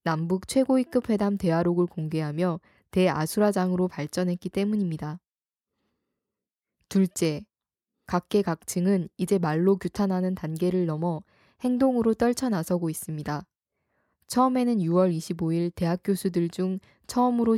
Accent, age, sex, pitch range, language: native, 20-39, female, 170-205 Hz, Korean